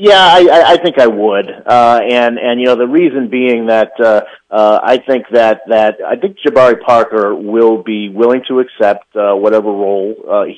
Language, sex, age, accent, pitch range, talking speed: English, male, 40-59, American, 105-125 Hz, 195 wpm